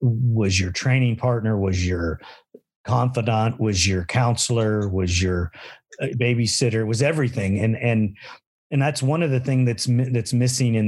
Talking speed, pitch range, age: 150 wpm, 105-125 Hz, 40-59